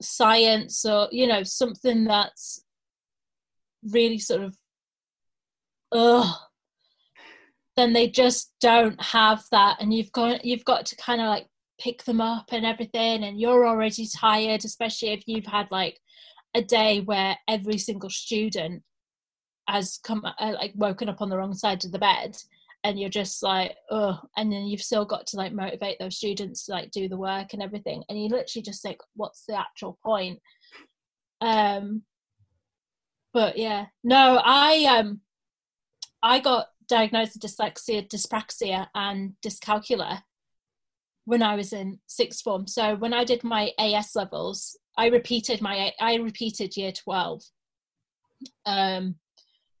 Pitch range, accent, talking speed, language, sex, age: 200-235 Hz, British, 150 wpm, English, female, 20-39